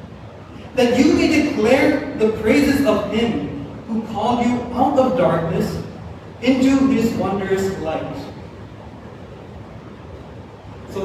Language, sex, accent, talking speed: English, male, American, 105 wpm